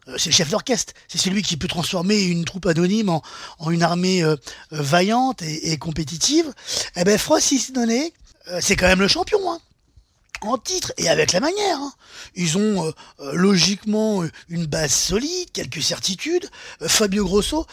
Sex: male